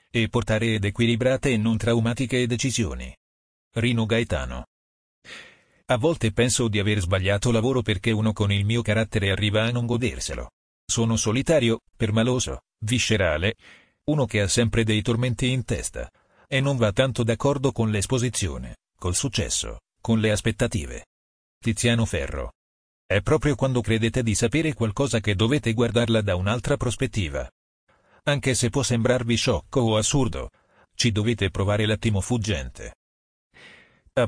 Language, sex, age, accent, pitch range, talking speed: Italian, male, 40-59, native, 100-125 Hz, 140 wpm